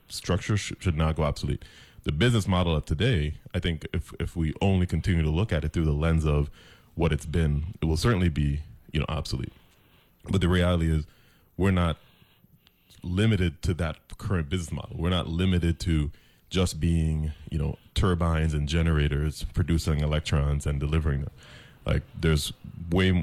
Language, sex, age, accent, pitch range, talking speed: English, male, 30-49, American, 75-90 Hz, 170 wpm